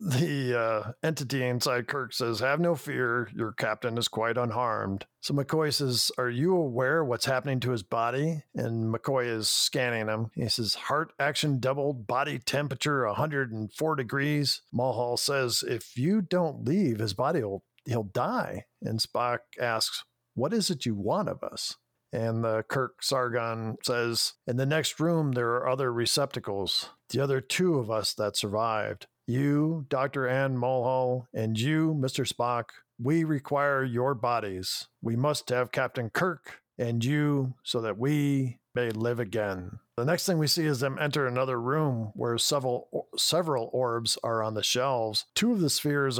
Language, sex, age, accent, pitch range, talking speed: English, male, 50-69, American, 115-140 Hz, 165 wpm